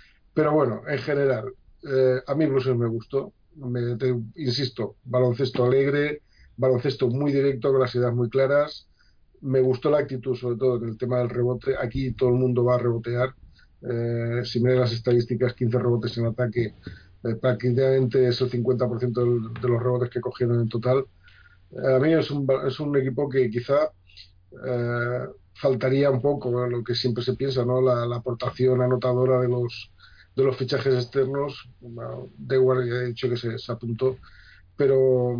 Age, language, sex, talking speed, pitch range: 50-69, Spanish, male, 175 wpm, 120-130 Hz